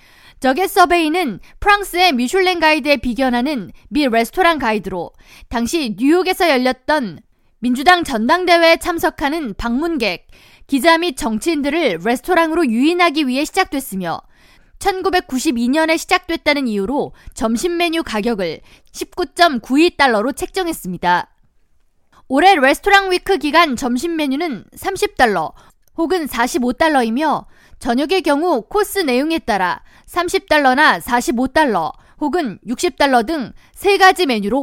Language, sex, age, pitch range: Korean, female, 20-39, 245-355 Hz